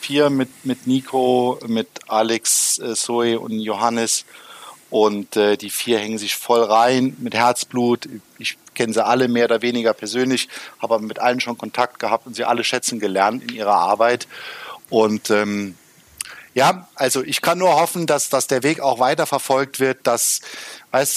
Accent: German